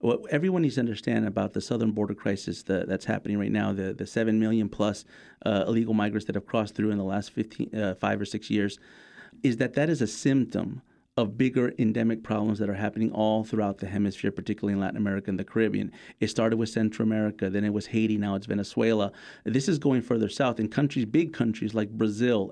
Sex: male